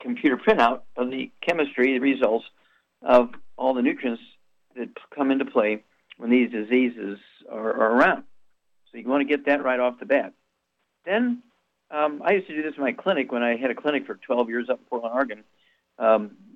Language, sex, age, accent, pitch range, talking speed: English, male, 50-69, American, 120-150 Hz, 190 wpm